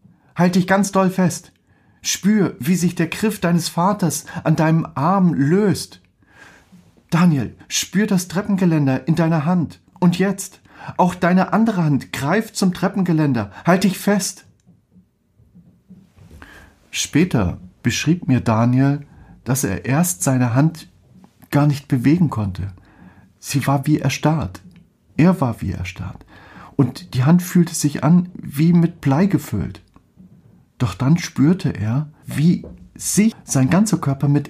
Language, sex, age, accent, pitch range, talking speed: German, male, 40-59, German, 115-175 Hz, 130 wpm